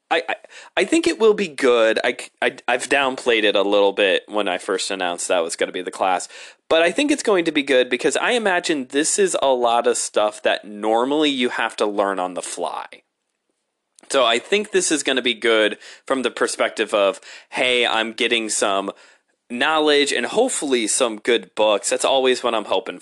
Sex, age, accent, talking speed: male, 20-39, American, 210 wpm